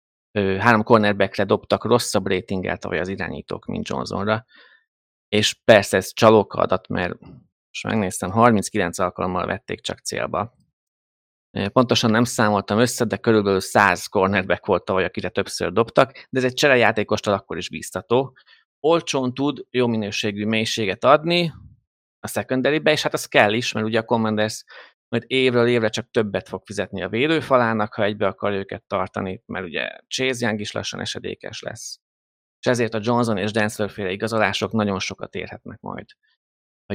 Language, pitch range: Hungarian, 95-120 Hz